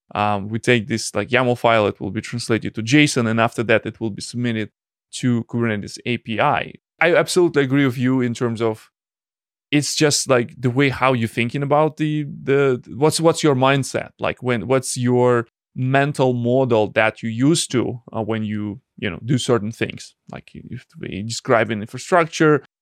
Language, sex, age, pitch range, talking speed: English, male, 20-39, 115-135 Hz, 185 wpm